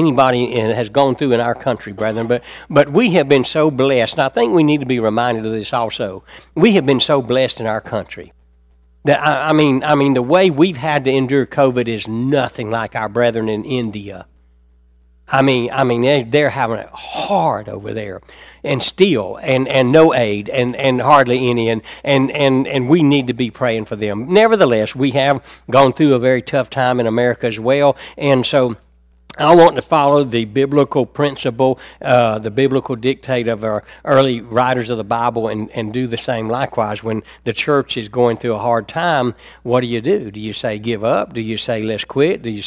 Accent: American